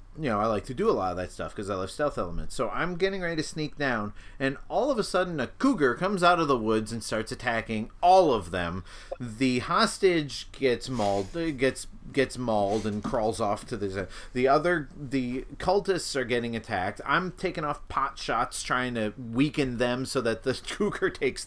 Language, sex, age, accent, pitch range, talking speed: English, male, 30-49, American, 100-135 Hz, 205 wpm